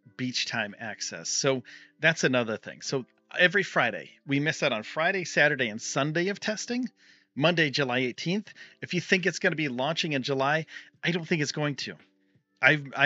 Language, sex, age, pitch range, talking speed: English, male, 40-59, 125-150 Hz, 185 wpm